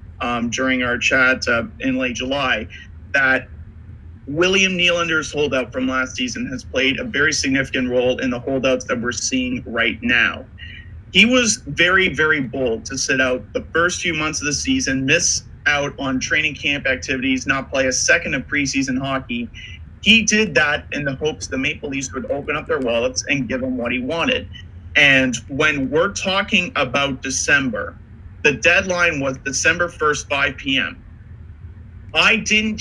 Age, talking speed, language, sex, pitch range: 30-49, 170 wpm, English, male, 120-170 Hz